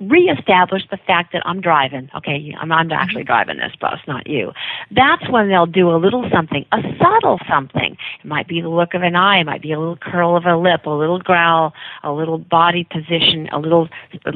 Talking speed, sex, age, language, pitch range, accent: 215 wpm, female, 50-69, English, 160-225 Hz, American